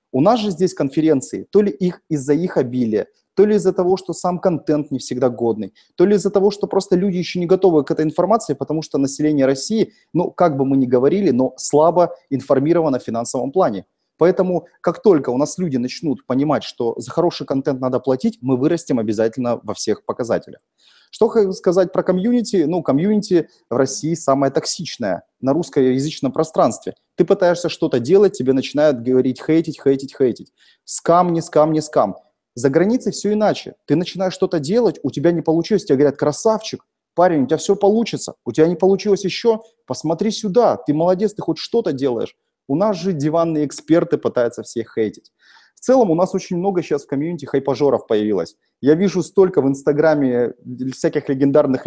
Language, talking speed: Russian, 180 wpm